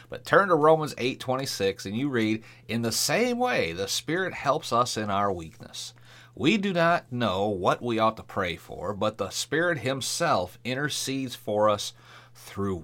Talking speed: 180 wpm